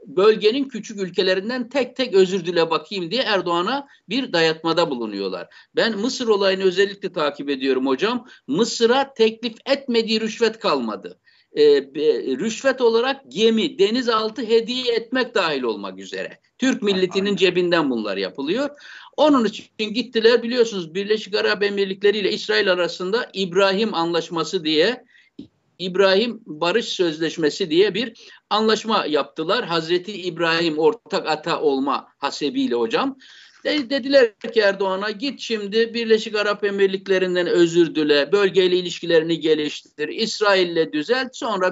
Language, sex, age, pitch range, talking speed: Turkish, male, 60-79, 180-245 Hz, 120 wpm